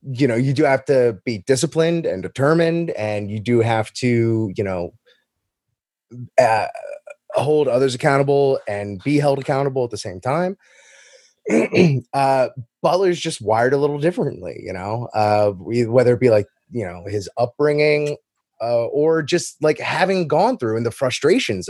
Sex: male